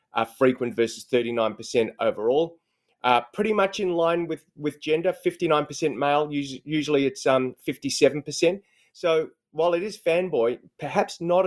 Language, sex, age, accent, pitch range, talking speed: English, male, 30-49, Australian, 125-155 Hz, 135 wpm